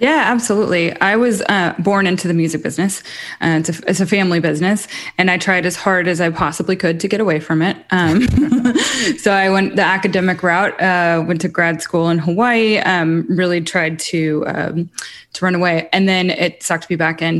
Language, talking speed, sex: English, 205 wpm, female